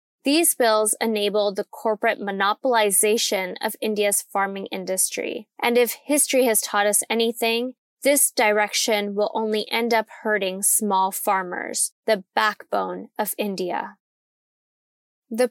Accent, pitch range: American, 210-245 Hz